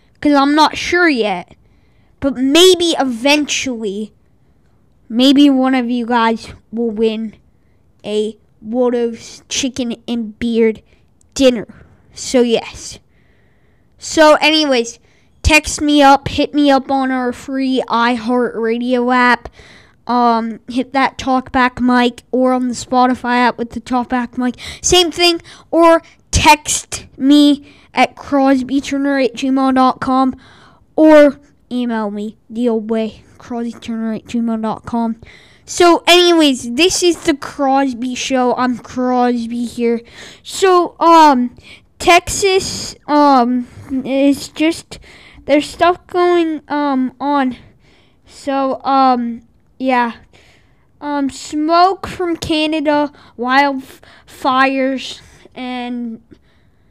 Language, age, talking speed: English, 20-39, 105 wpm